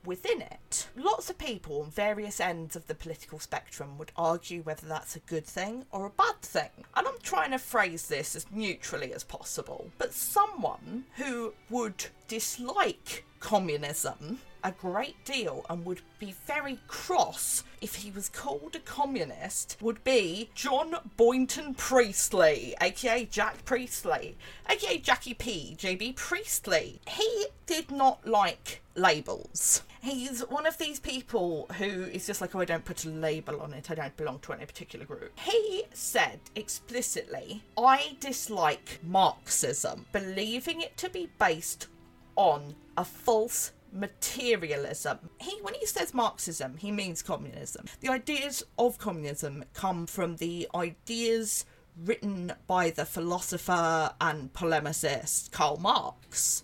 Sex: female